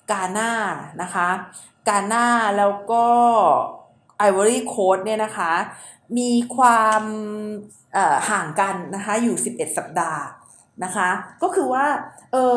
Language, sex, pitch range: Thai, female, 190-245 Hz